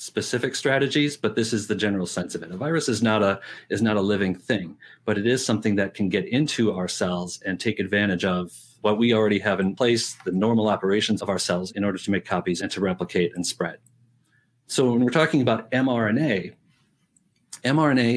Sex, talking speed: male, 210 wpm